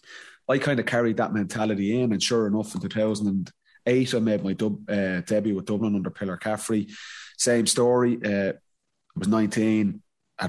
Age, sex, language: 30-49, male, English